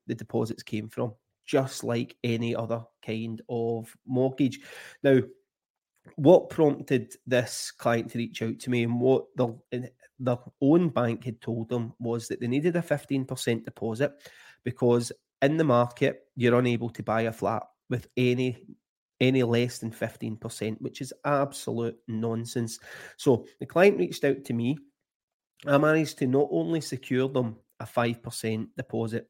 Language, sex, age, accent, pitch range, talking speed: English, male, 30-49, British, 115-140 Hz, 160 wpm